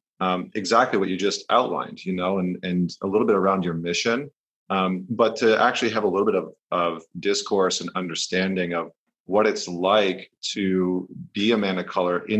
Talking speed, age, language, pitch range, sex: 190 wpm, 30-49, English, 90-100 Hz, male